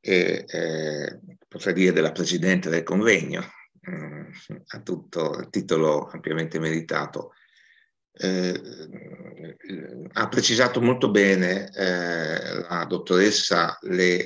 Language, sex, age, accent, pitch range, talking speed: Italian, male, 50-69, native, 90-110 Hz, 95 wpm